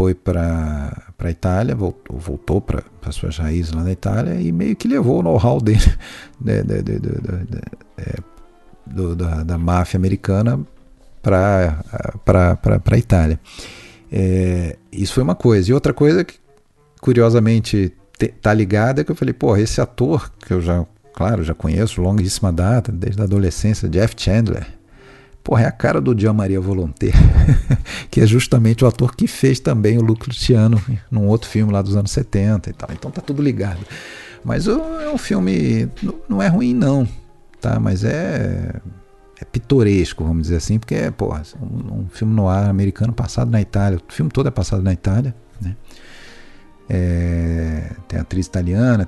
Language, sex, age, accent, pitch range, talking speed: Portuguese, male, 50-69, Brazilian, 90-120 Hz, 165 wpm